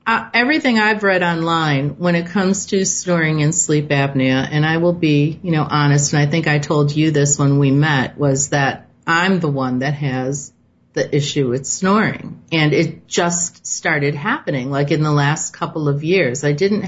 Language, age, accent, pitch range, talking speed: English, 40-59, American, 145-180 Hz, 195 wpm